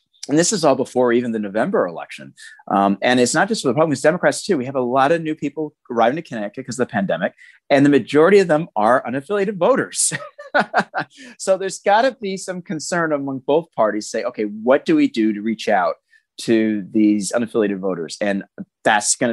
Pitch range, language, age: 105-150 Hz, English, 40-59